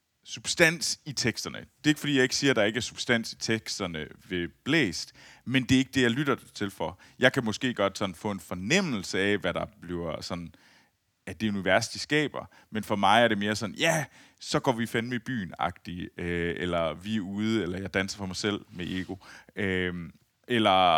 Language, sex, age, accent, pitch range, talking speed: Danish, male, 30-49, native, 95-130 Hz, 215 wpm